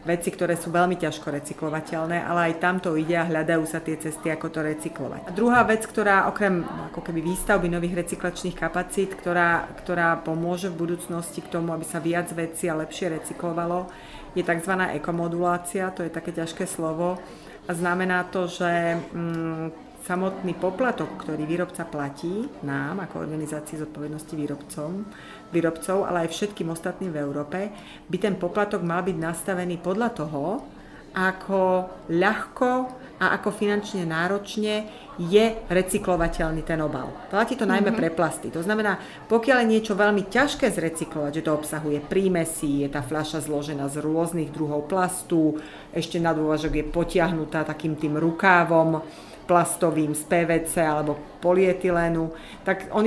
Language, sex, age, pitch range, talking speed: Slovak, female, 30-49, 160-190 Hz, 145 wpm